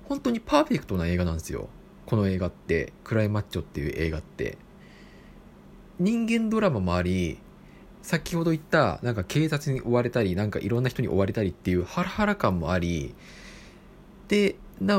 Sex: male